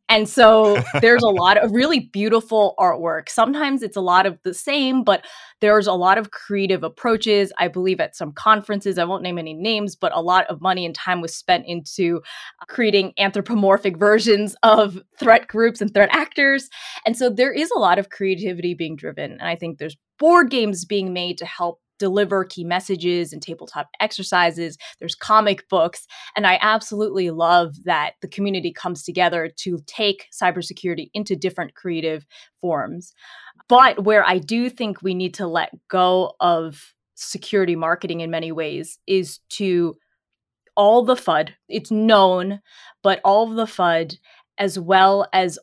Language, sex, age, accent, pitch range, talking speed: English, female, 20-39, American, 175-215 Hz, 170 wpm